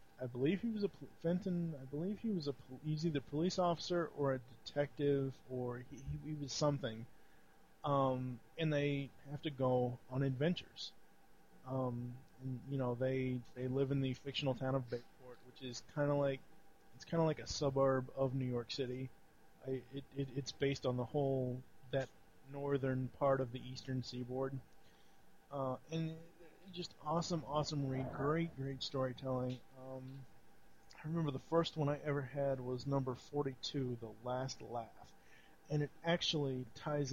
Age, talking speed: 30-49, 175 wpm